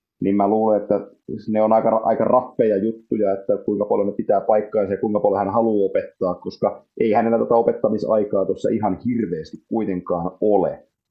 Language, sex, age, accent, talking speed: Finnish, male, 30-49, native, 180 wpm